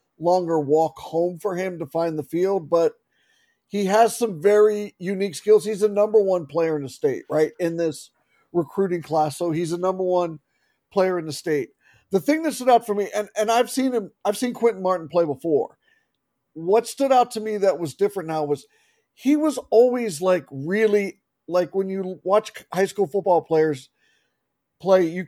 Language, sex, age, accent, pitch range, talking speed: English, male, 50-69, American, 165-210 Hz, 190 wpm